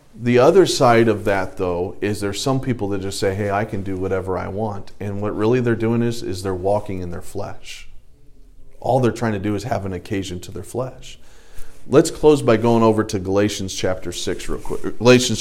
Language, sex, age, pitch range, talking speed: English, male, 40-59, 110-140 Hz, 220 wpm